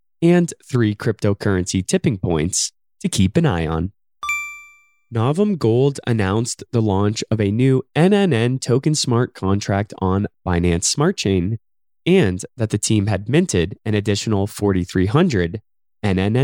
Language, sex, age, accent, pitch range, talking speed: English, male, 20-39, American, 100-150 Hz, 130 wpm